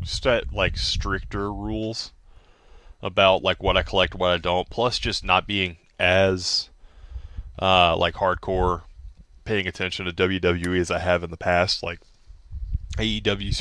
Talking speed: 145 wpm